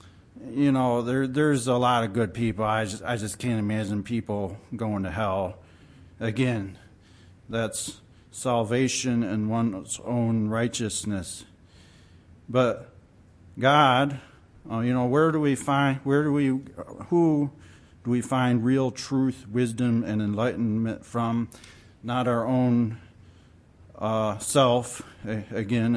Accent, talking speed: American, 125 wpm